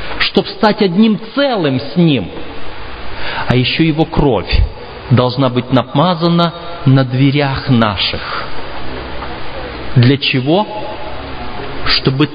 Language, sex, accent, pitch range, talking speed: Russian, male, native, 110-170 Hz, 90 wpm